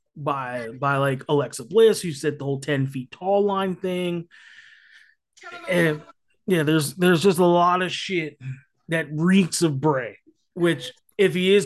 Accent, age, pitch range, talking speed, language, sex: American, 20-39, 145-180 Hz, 160 wpm, English, male